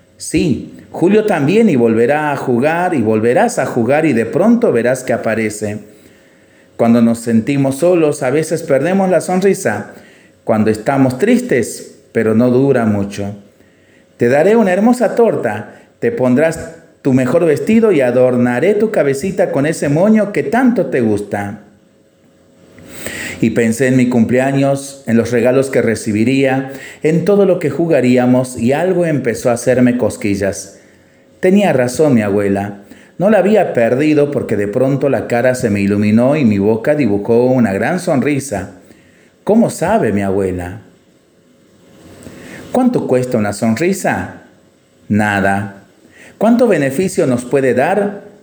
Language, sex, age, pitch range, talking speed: Spanish, male, 40-59, 105-155 Hz, 140 wpm